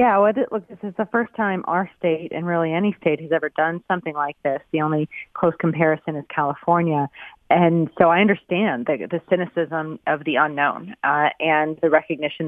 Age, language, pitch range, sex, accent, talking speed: 30-49, English, 150-170 Hz, female, American, 190 wpm